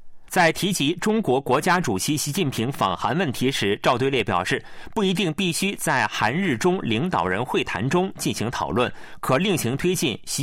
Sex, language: male, Chinese